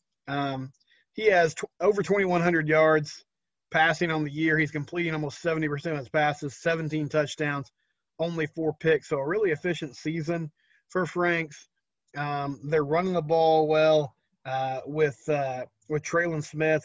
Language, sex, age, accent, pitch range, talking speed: English, male, 30-49, American, 145-165 Hz, 150 wpm